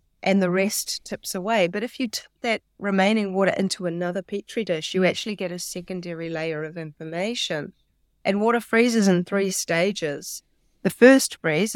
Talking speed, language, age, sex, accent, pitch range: 170 wpm, English, 30-49, female, Australian, 175-210 Hz